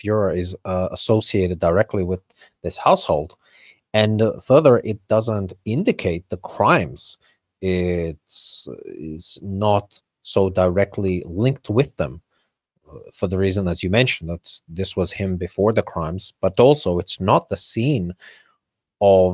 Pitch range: 95-110 Hz